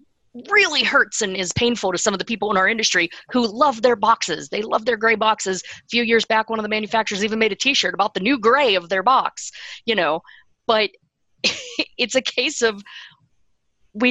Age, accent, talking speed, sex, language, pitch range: 40-59, American, 210 wpm, female, English, 180-225 Hz